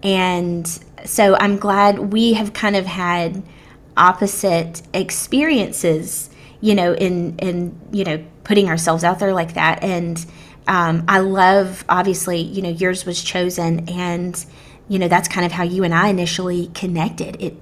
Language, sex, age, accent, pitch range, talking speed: English, female, 20-39, American, 165-195 Hz, 155 wpm